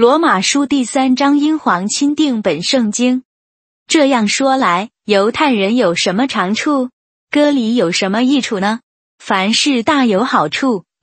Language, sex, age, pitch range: Chinese, female, 20-39, 200-275 Hz